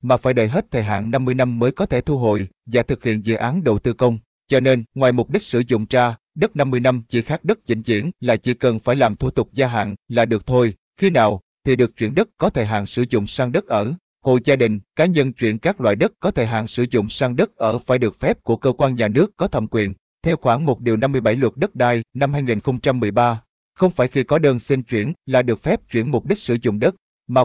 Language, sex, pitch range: Vietnamese, male, 115-135 Hz